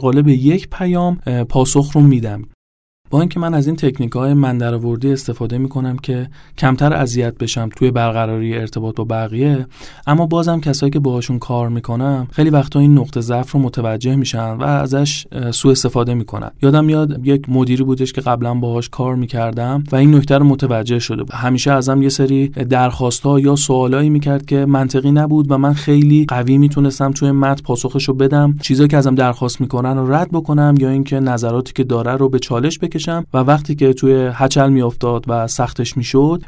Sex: male